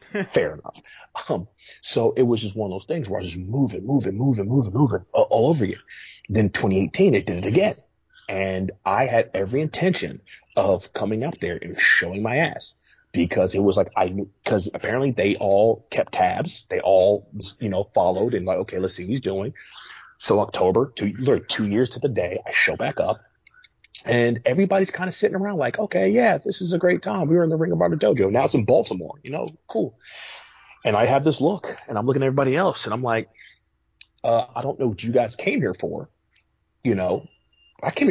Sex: male